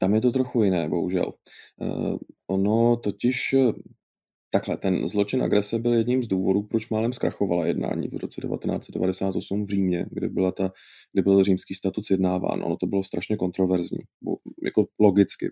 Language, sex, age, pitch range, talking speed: Czech, male, 30-49, 95-115 Hz, 155 wpm